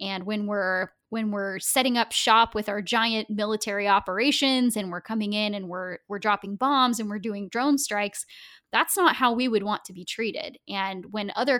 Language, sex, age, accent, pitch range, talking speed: English, female, 10-29, American, 195-235 Hz, 200 wpm